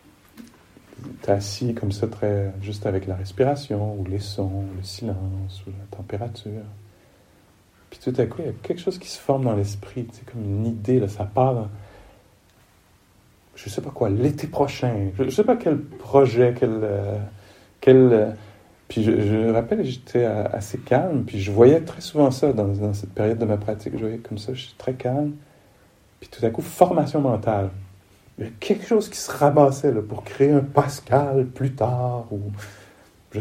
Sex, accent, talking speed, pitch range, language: male, French, 185 wpm, 100-130 Hz, English